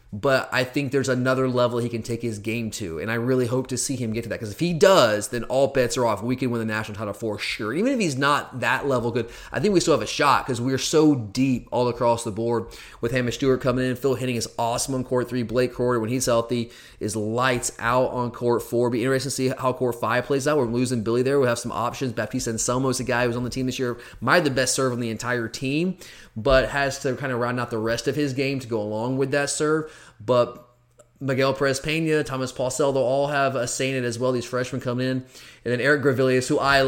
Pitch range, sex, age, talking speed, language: 120-145 Hz, male, 30-49, 270 wpm, English